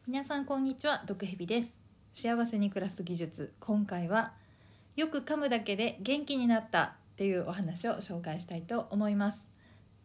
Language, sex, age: Japanese, female, 40-59